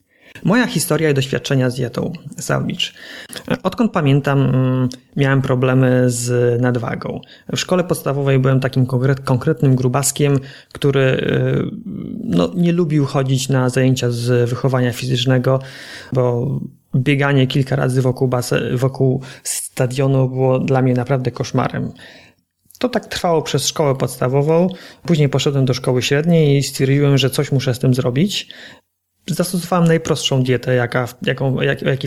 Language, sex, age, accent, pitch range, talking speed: Polish, male, 30-49, native, 130-165 Hz, 120 wpm